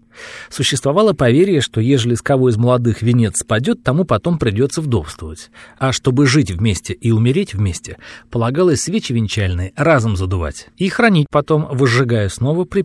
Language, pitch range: Russian, 110-160 Hz